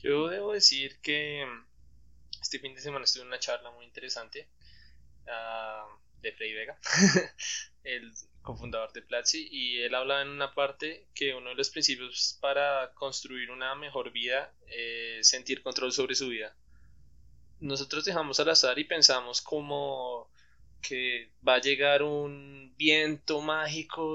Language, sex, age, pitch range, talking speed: Spanish, male, 20-39, 125-145 Hz, 145 wpm